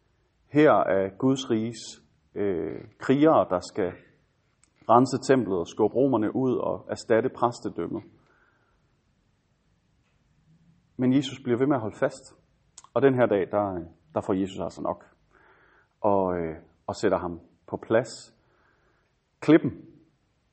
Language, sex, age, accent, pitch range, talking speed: Danish, male, 30-49, native, 90-125 Hz, 125 wpm